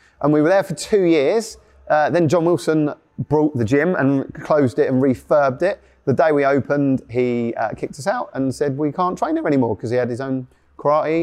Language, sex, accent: English, male, British